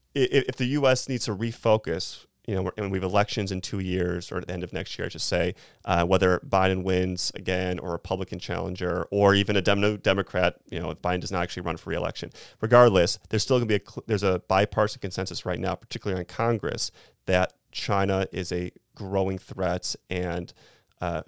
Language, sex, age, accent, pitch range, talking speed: English, male, 30-49, American, 90-110 Hz, 210 wpm